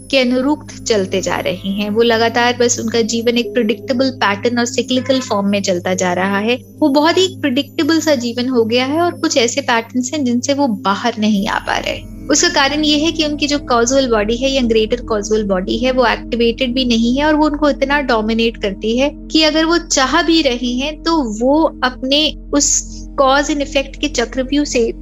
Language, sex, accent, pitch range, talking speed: Hindi, female, native, 220-275 Hz, 145 wpm